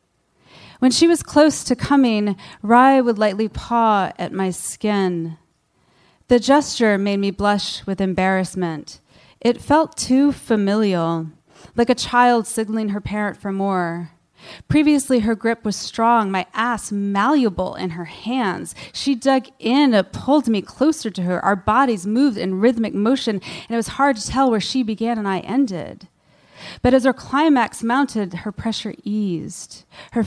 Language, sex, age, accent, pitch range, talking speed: English, female, 30-49, American, 180-240 Hz, 155 wpm